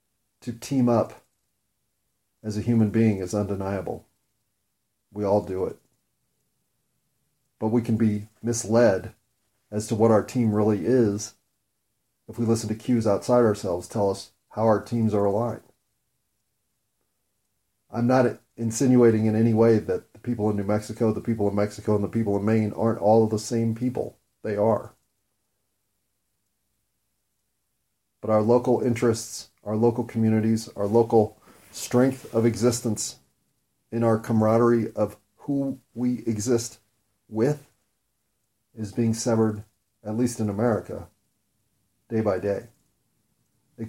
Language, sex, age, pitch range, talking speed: English, male, 40-59, 105-120 Hz, 135 wpm